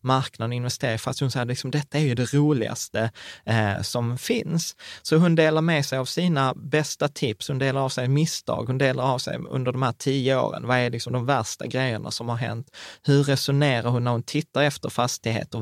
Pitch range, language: 120-150 Hz, Swedish